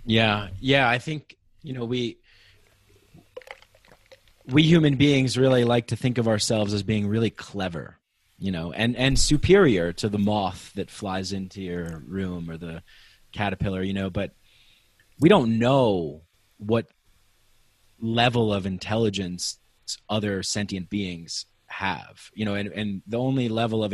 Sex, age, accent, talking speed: male, 30-49, American, 145 wpm